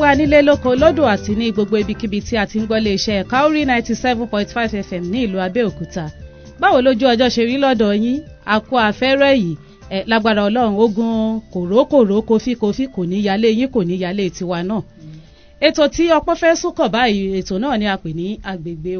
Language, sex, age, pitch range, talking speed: English, female, 30-49, 195-265 Hz, 165 wpm